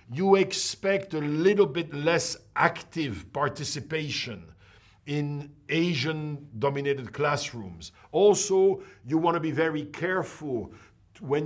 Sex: male